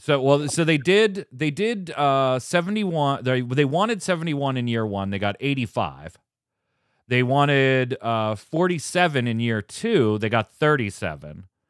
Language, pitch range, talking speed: English, 105-145 Hz, 175 wpm